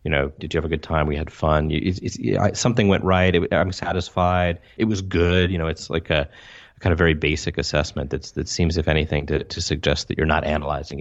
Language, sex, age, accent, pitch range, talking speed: English, male, 30-49, American, 75-90 Hz, 255 wpm